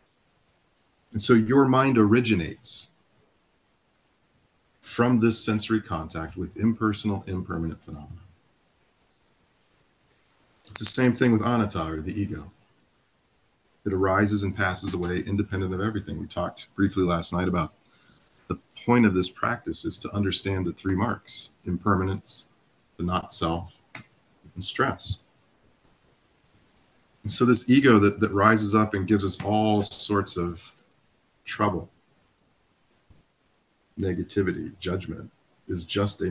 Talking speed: 120 wpm